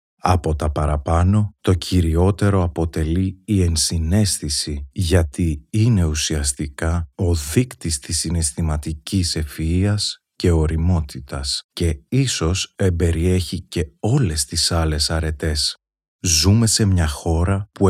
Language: Greek